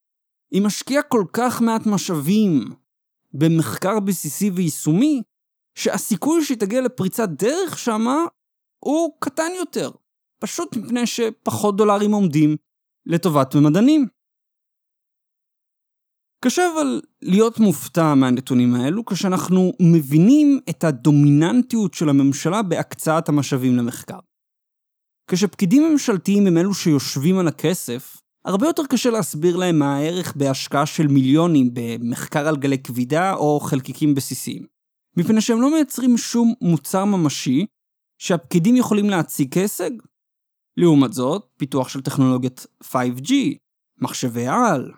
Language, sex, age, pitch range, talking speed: Hebrew, male, 30-49, 145-230 Hz, 110 wpm